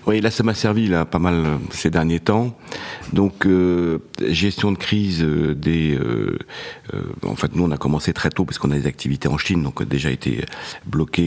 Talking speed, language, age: 215 wpm, French, 50-69